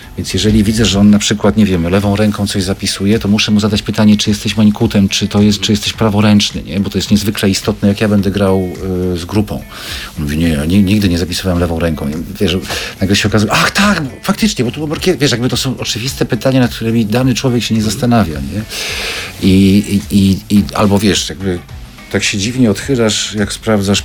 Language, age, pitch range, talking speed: Polish, 50-69, 100-115 Hz, 215 wpm